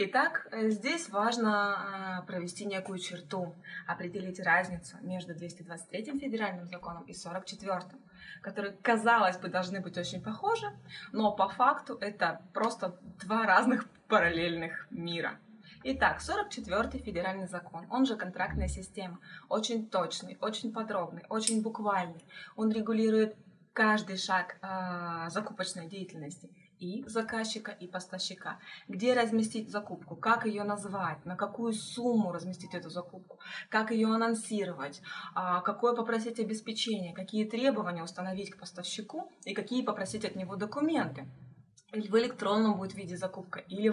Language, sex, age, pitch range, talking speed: Russian, female, 20-39, 185-225 Hz, 125 wpm